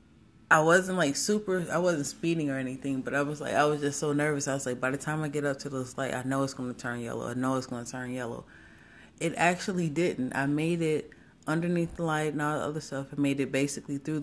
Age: 30-49